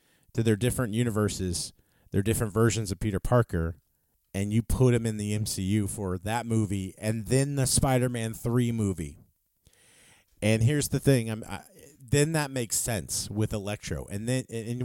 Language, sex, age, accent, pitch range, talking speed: English, male, 40-59, American, 95-120 Hz, 165 wpm